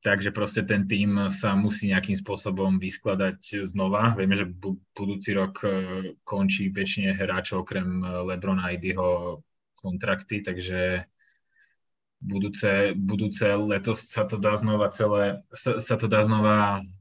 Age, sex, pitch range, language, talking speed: 20-39, male, 95-105 Hz, Slovak, 130 wpm